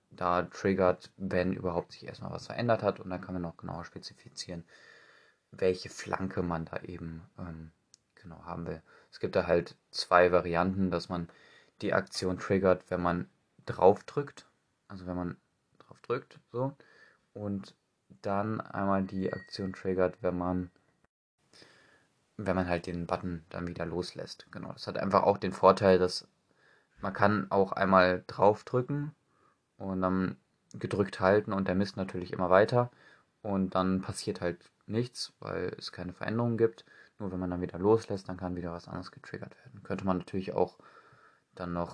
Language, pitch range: German, 85-100 Hz